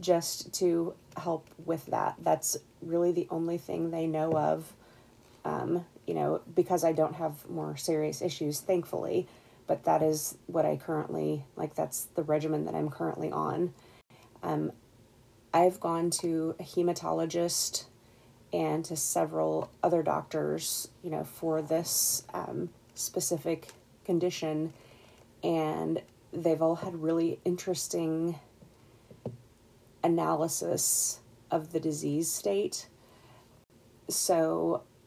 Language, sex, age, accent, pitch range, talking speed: English, female, 30-49, American, 125-175 Hz, 115 wpm